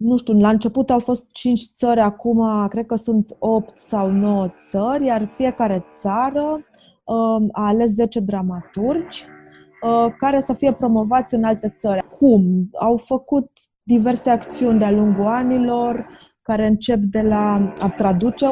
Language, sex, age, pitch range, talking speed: Romanian, female, 20-39, 200-240 Hz, 145 wpm